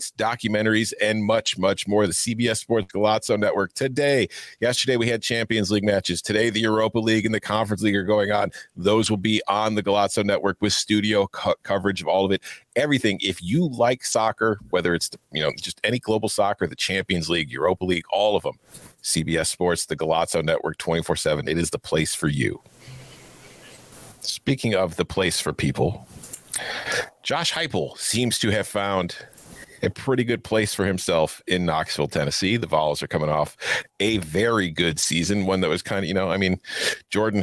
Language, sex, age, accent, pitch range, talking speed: English, male, 40-59, American, 95-115 Hz, 190 wpm